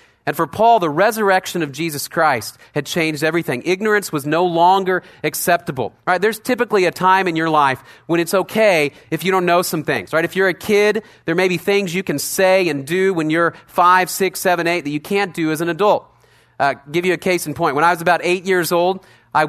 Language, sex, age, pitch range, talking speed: English, male, 30-49, 145-185 Hz, 230 wpm